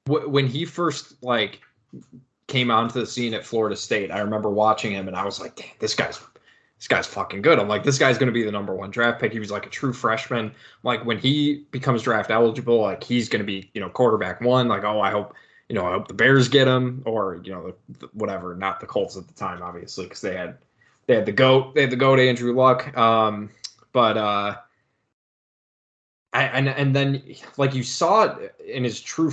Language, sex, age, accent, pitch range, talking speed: English, male, 20-39, American, 105-130 Hz, 220 wpm